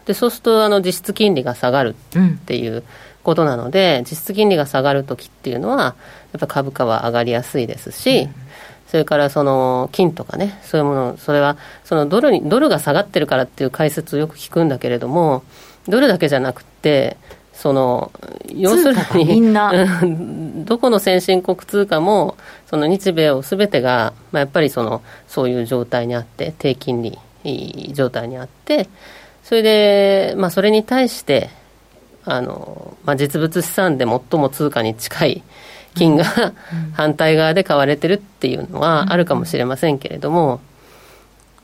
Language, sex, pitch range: Japanese, female, 135-195 Hz